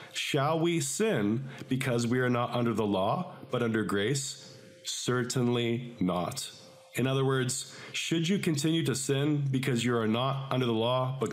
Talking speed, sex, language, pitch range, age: 165 wpm, male, English, 120-150 Hz, 40-59